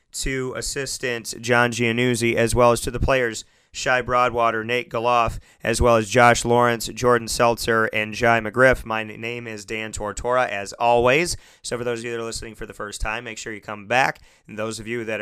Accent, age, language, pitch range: American, 30-49, English, 110-125 Hz